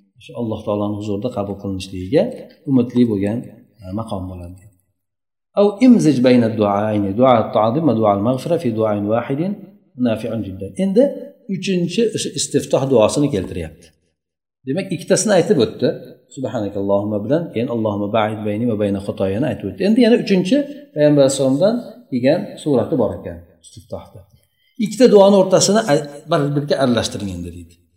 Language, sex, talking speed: Russian, male, 45 wpm